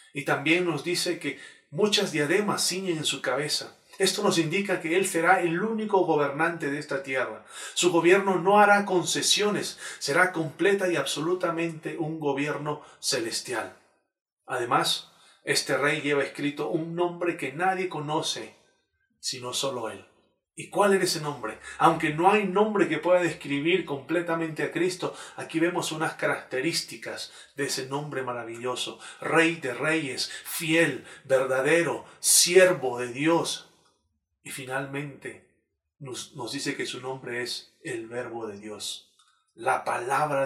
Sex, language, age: male, Spanish, 40-59